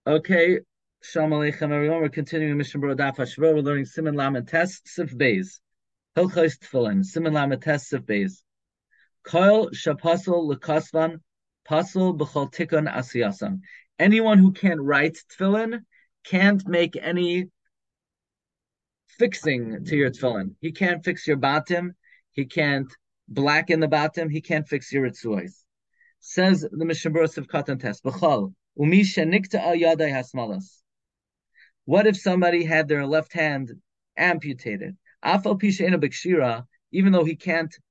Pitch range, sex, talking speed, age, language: 145-185 Hz, male, 115 wpm, 30-49, English